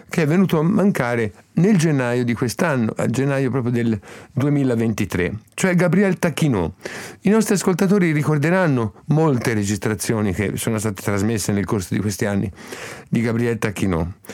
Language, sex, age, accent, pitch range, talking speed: Italian, male, 50-69, native, 105-155 Hz, 145 wpm